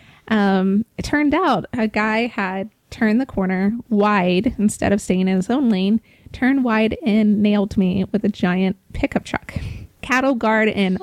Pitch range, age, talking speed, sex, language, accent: 210-265 Hz, 20-39, 170 wpm, female, English, American